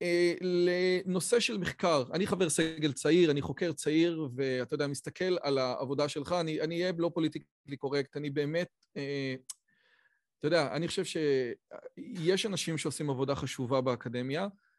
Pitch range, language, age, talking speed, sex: 135-165 Hz, Hebrew, 30-49, 140 wpm, male